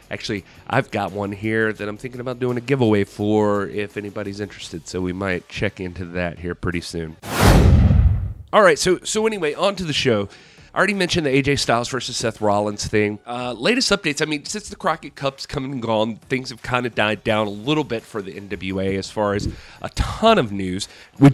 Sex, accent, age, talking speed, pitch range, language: male, American, 30-49, 215 wpm, 100-135 Hz, English